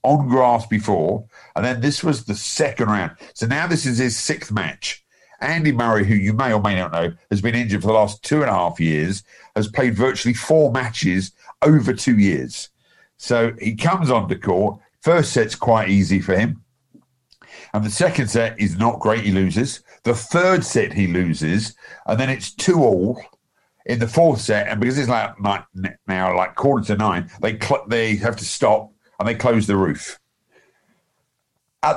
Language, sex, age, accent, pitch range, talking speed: English, male, 50-69, British, 95-130 Hz, 190 wpm